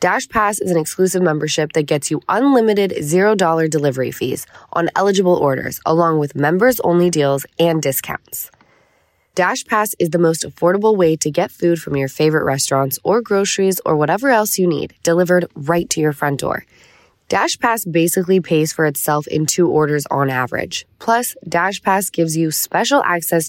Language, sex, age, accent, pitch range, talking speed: English, female, 20-39, American, 150-195 Hz, 160 wpm